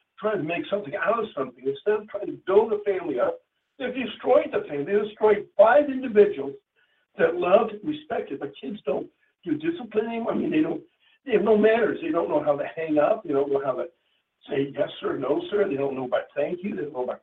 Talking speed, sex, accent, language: 235 wpm, male, American, English